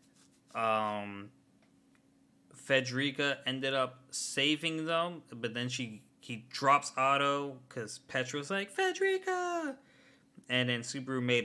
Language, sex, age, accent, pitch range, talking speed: English, male, 20-39, American, 110-135 Hz, 110 wpm